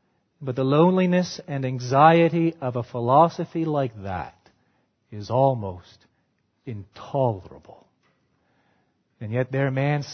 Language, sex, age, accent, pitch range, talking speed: English, male, 40-59, American, 120-160 Hz, 105 wpm